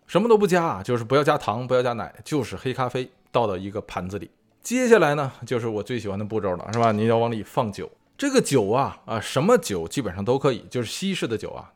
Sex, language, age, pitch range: male, Chinese, 20-39, 115-160 Hz